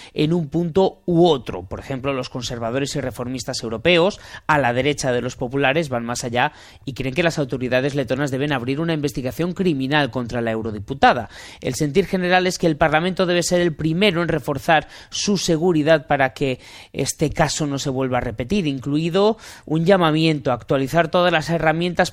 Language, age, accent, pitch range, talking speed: Spanish, 30-49, Spanish, 130-170 Hz, 180 wpm